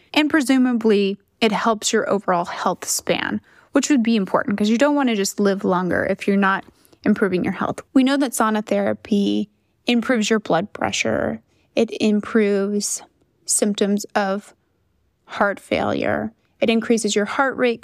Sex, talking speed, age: female, 155 wpm, 20-39